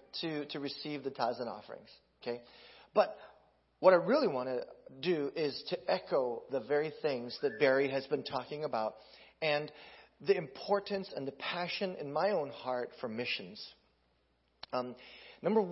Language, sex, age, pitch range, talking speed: English, male, 40-59, 125-195 Hz, 155 wpm